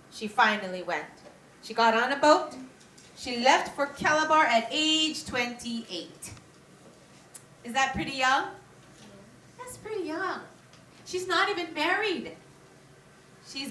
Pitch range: 205-280 Hz